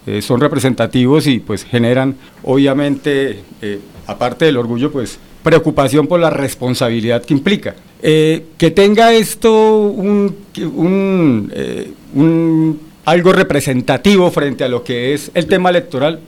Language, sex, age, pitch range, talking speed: Spanish, male, 40-59, 140-190 Hz, 135 wpm